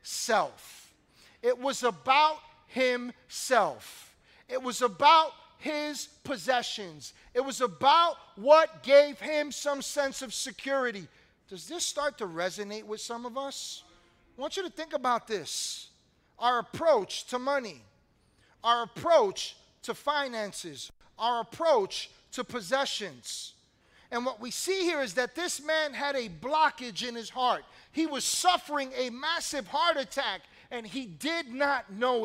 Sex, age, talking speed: male, 40-59, 140 wpm